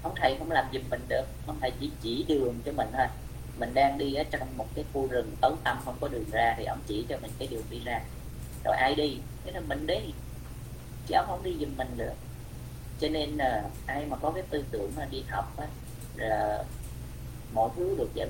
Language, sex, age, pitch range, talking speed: Vietnamese, female, 20-39, 110-150 Hz, 235 wpm